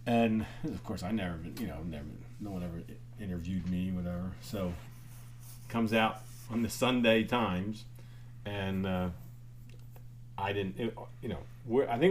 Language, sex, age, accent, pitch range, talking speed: English, male, 40-59, American, 95-120 Hz, 160 wpm